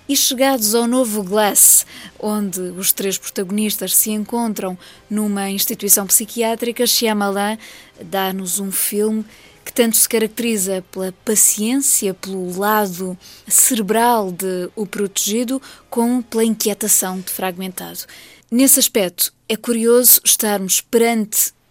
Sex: female